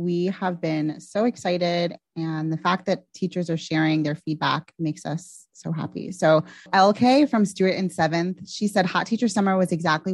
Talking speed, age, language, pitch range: 185 wpm, 20-39, English, 160-185 Hz